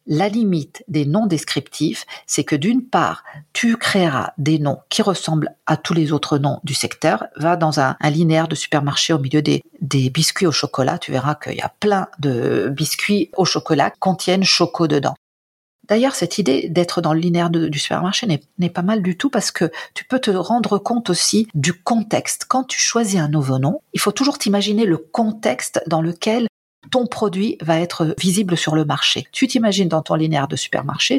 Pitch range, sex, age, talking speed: 155-205 Hz, female, 50-69, 200 wpm